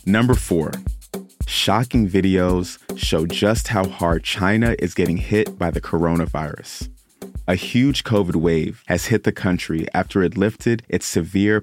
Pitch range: 85-110 Hz